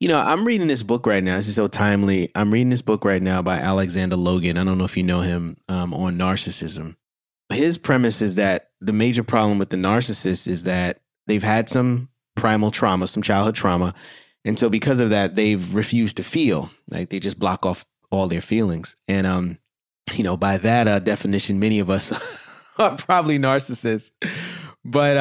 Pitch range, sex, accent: 95-120 Hz, male, American